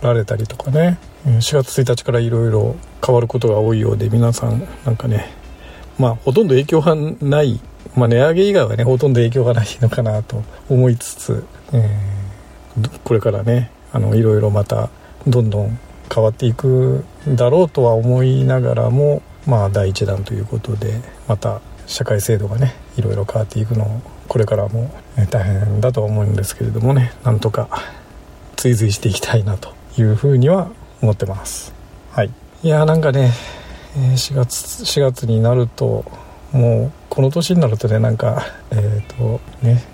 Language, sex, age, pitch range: Japanese, male, 50-69, 110-130 Hz